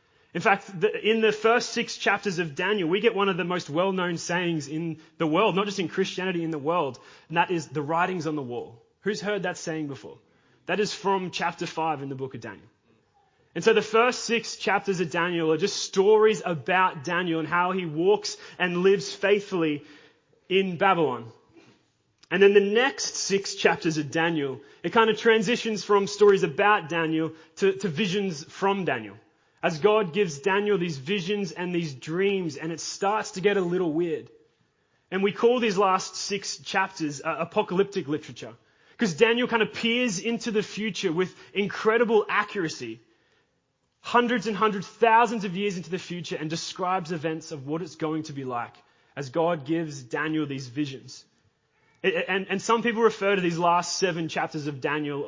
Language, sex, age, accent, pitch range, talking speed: English, male, 20-39, Australian, 160-205 Hz, 185 wpm